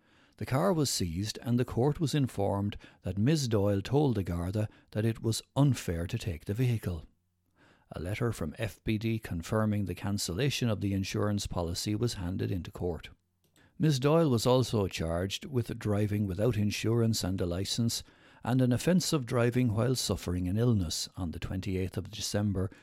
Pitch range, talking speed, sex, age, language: 95-120 Hz, 170 wpm, male, 60-79, English